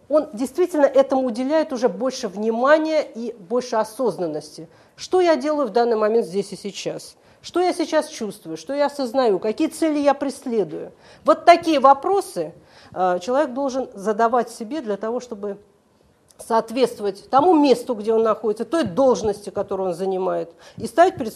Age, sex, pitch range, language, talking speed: 40-59, female, 190-265 Hz, Russian, 150 wpm